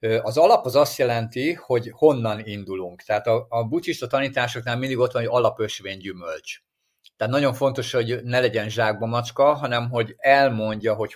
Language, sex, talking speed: Hungarian, male, 165 wpm